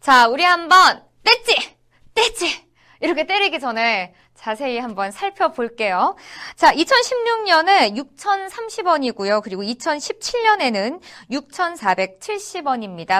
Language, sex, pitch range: Korean, female, 235-390 Hz